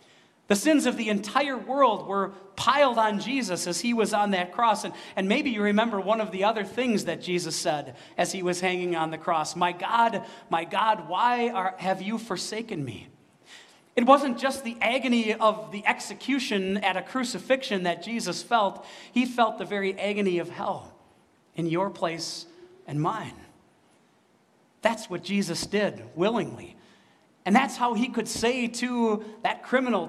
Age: 40-59